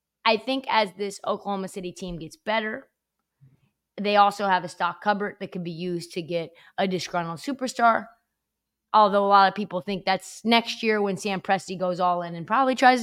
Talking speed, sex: 195 wpm, female